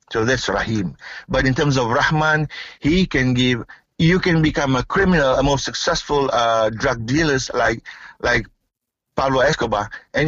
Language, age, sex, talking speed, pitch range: English, 50-69, male, 160 wpm, 120-150 Hz